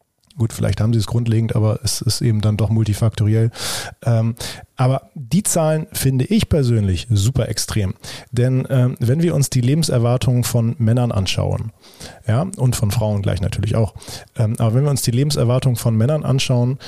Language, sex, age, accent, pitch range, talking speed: German, male, 40-59, German, 110-130 Hz, 165 wpm